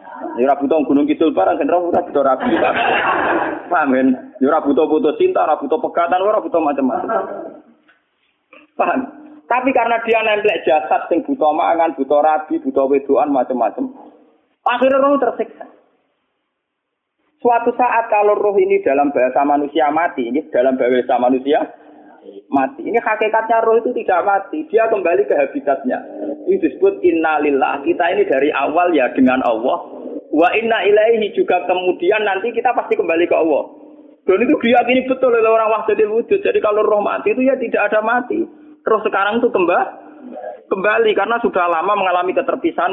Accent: native